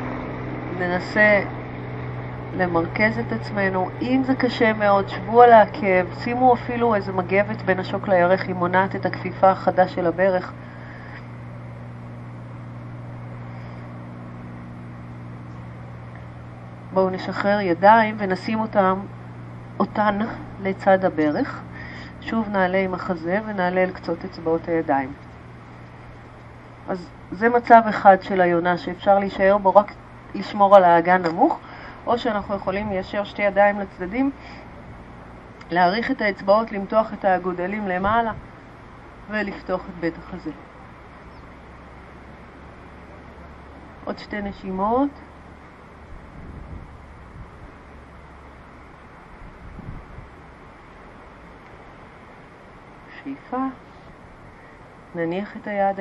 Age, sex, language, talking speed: 40-59, female, Hebrew, 85 wpm